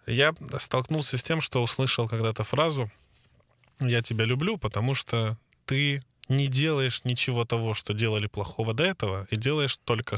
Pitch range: 110-130 Hz